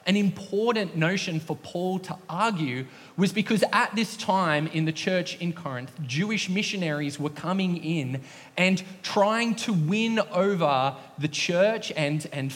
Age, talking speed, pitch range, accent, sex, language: 20-39, 150 wpm, 155-200 Hz, Australian, male, English